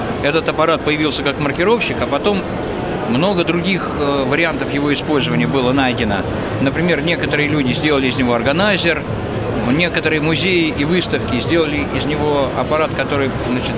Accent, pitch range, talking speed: native, 125-160 Hz, 135 wpm